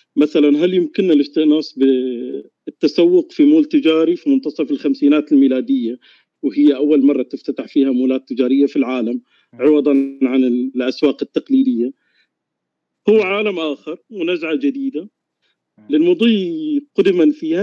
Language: Arabic